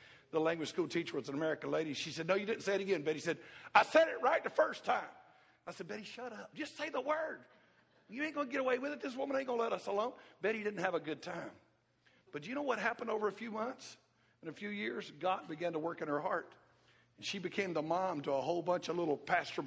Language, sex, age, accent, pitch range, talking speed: English, male, 50-69, American, 140-190 Hz, 270 wpm